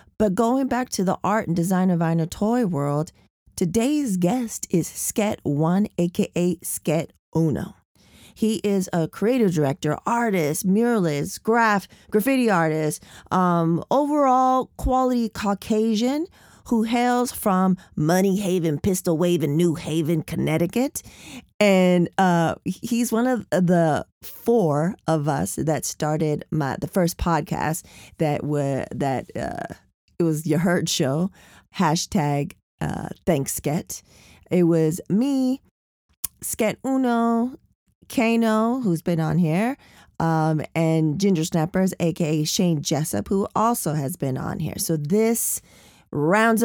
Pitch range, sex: 160-220 Hz, female